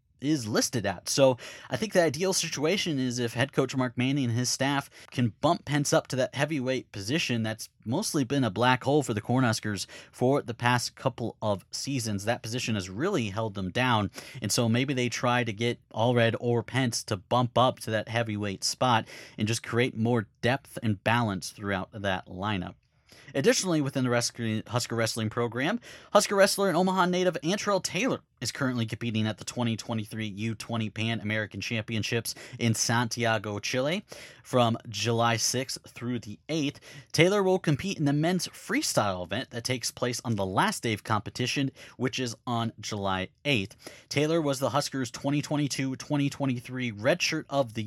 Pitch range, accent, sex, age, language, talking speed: 110-135 Hz, American, male, 30-49, English, 170 wpm